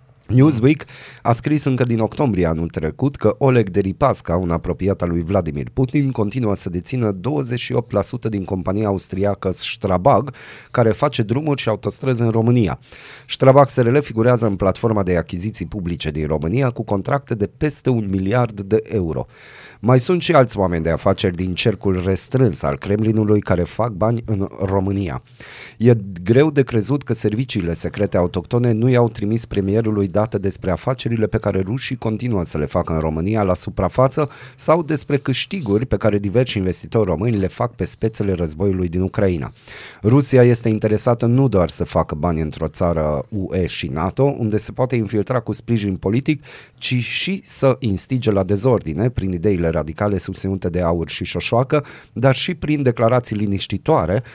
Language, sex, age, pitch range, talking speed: Romanian, male, 30-49, 95-125 Hz, 165 wpm